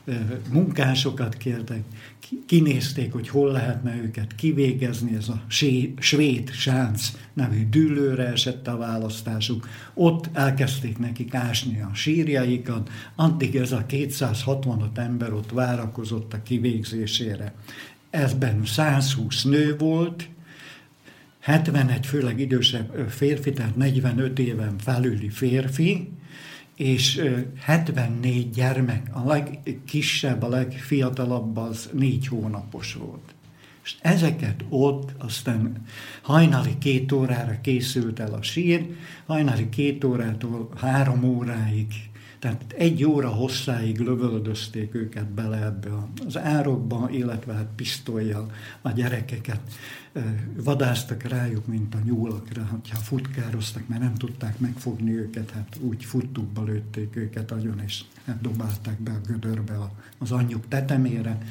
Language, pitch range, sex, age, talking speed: Slovak, 115-135 Hz, male, 60-79, 110 wpm